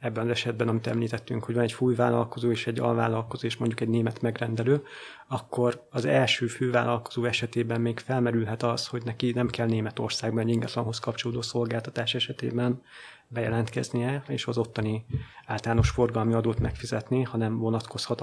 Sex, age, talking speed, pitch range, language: male, 30-49, 150 wpm, 115-120 Hz, Hungarian